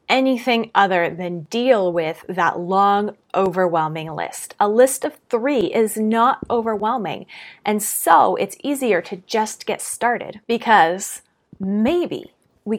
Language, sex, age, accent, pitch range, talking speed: English, female, 30-49, American, 195-245 Hz, 125 wpm